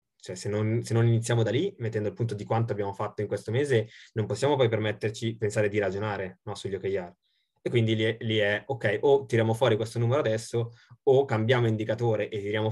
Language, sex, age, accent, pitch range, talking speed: Italian, male, 20-39, native, 105-120 Hz, 215 wpm